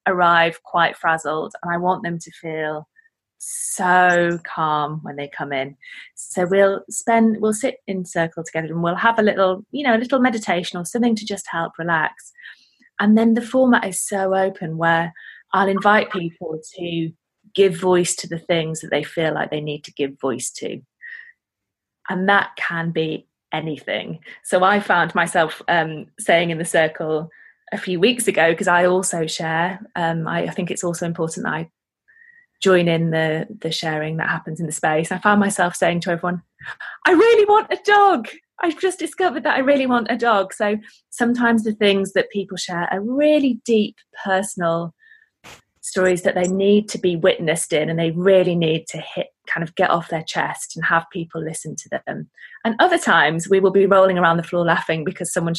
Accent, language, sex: British, English, female